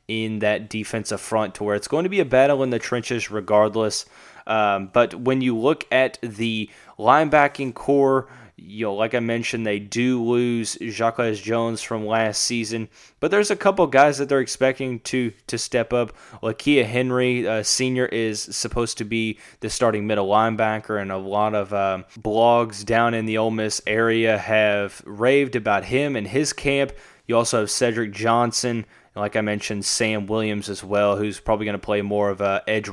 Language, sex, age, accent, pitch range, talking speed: English, male, 10-29, American, 105-125 Hz, 185 wpm